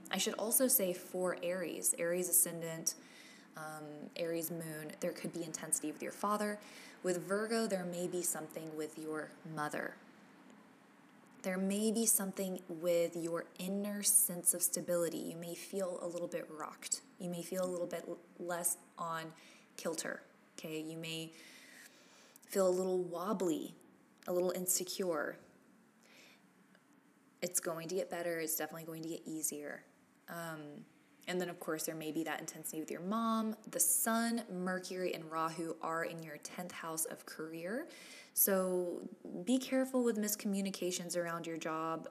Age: 20-39